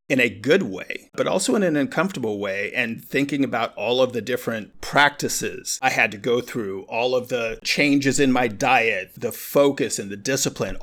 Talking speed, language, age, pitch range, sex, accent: 195 wpm, English, 50-69, 120-155 Hz, male, American